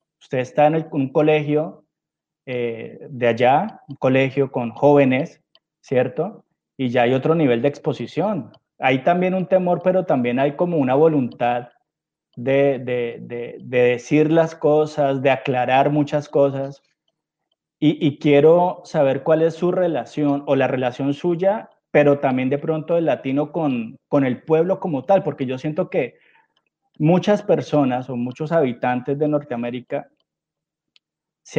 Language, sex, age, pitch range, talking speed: Spanish, male, 30-49, 135-160 Hz, 145 wpm